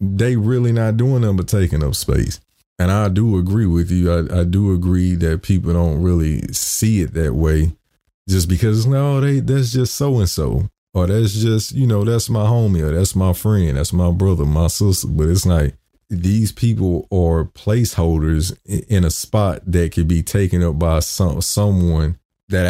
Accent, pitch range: American, 80-95 Hz